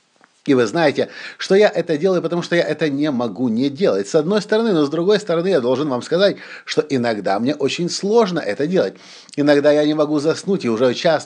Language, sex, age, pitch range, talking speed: Russian, male, 50-69, 145-185 Hz, 220 wpm